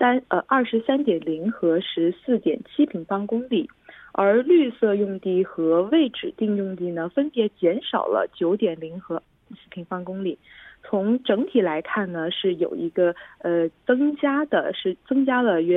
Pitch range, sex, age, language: 170-240 Hz, female, 20-39, Korean